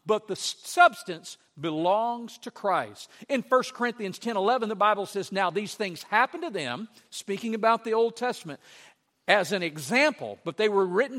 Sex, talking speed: male, 170 wpm